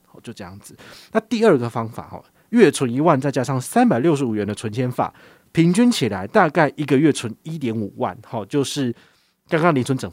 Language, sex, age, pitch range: Chinese, male, 30-49, 110-150 Hz